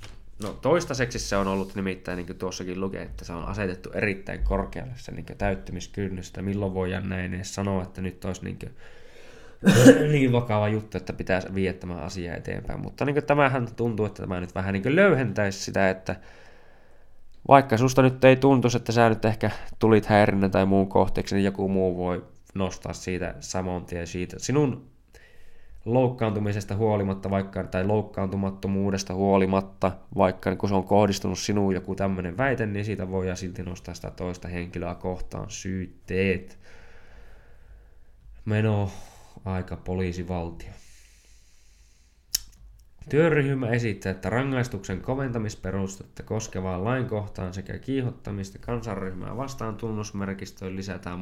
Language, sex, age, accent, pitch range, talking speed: Finnish, male, 20-39, native, 95-110 Hz, 130 wpm